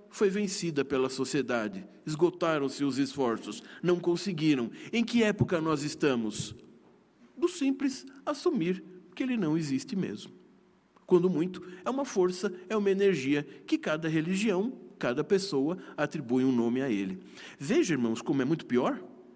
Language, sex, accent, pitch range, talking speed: Portuguese, male, Brazilian, 140-200 Hz, 145 wpm